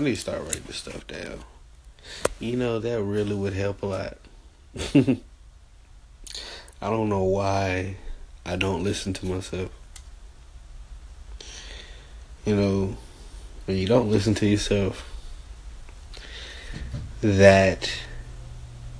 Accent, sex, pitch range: American, male, 70-100 Hz